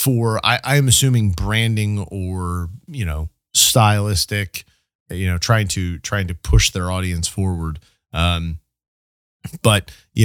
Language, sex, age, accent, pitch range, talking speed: English, male, 30-49, American, 95-140 Hz, 130 wpm